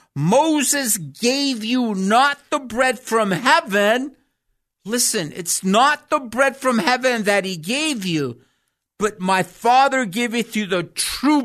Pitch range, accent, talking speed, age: 170-260 Hz, American, 135 wpm, 50-69